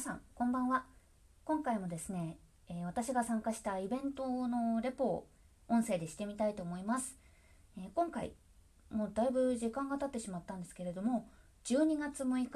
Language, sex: Japanese, female